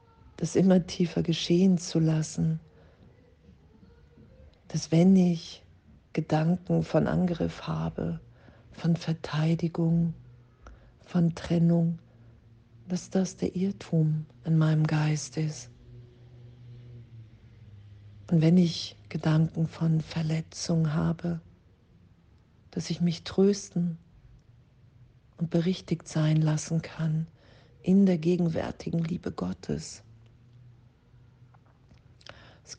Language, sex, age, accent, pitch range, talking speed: German, female, 50-69, German, 115-165 Hz, 85 wpm